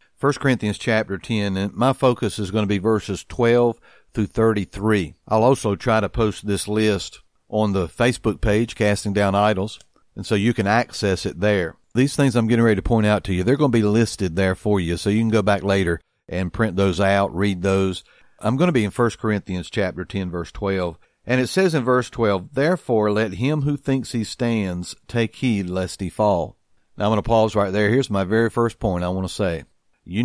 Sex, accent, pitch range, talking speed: male, American, 95-120 Hz, 220 wpm